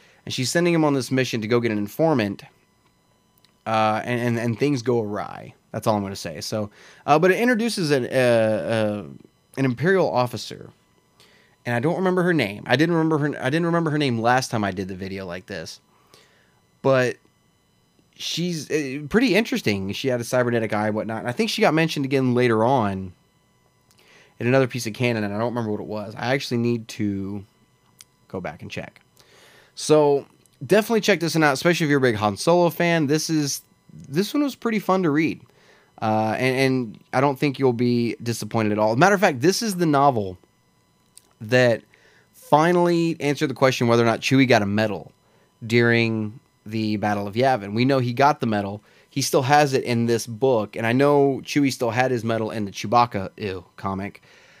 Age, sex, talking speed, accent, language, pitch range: 30-49, male, 200 wpm, American, English, 110-150 Hz